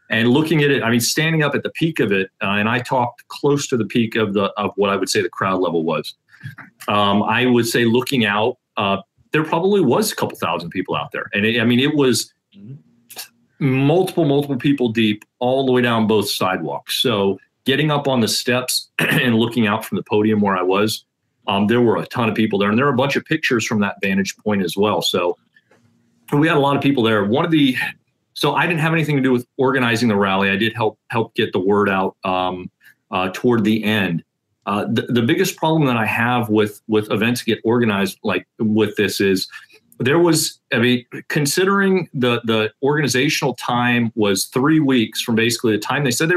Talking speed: 220 wpm